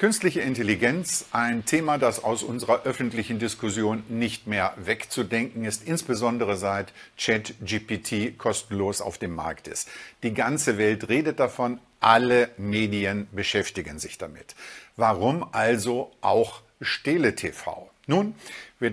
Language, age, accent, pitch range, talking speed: German, 50-69, German, 110-125 Hz, 120 wpm